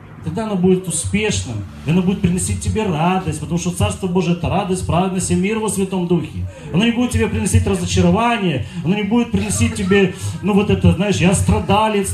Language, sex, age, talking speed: Russian, male, 40-59, 200 wpm